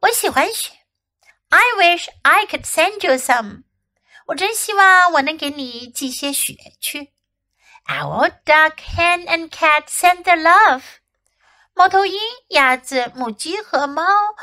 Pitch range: 265-360 Hz